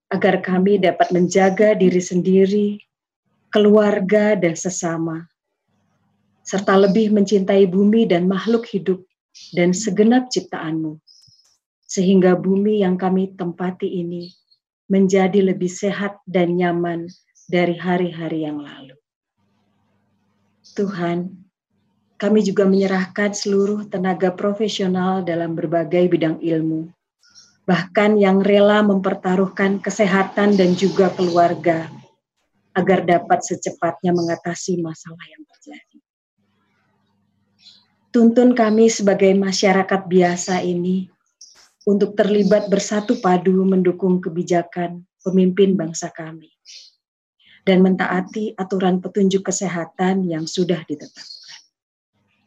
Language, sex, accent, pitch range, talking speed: Indonesian, female, native, 175-200 Hz, 95 wpm